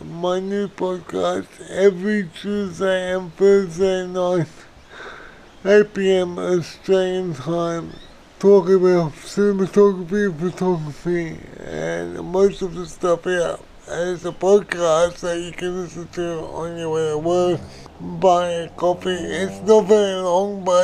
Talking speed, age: 130 wpm, 60-79